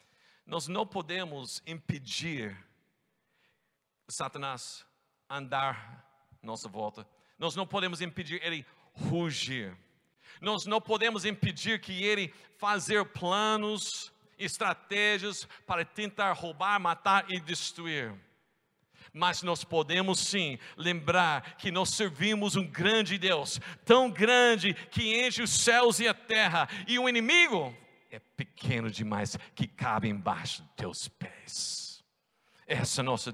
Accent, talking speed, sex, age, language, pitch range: Brazilian, 115 wpm, male, 60-79, Portuguese, 155-215 Hz